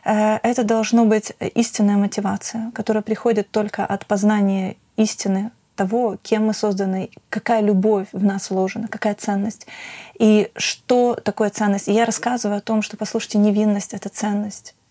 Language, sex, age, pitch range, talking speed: Ukrainian, female, 30-49, 205-230 Hz, 150 wpm